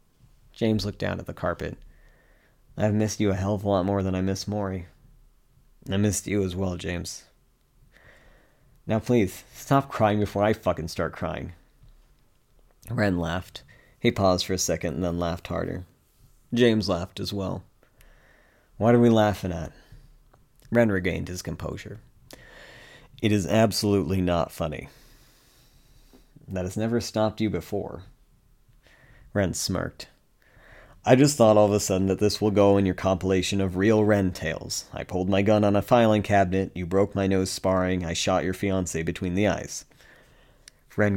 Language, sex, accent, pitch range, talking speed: English, male, American, 90-110 Hz, 160 wpm